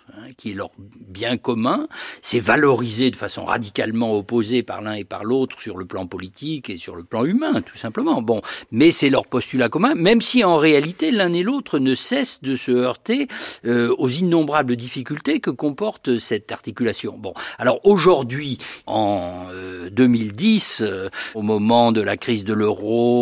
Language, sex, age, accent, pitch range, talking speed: French, male, 50-69, French, 120-165 Hz, 175 wpm